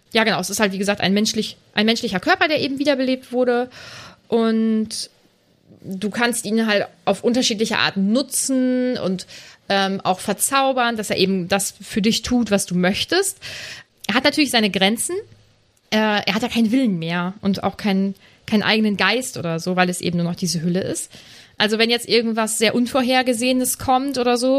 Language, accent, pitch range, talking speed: German, German, 190-245 Hz, 185 wpm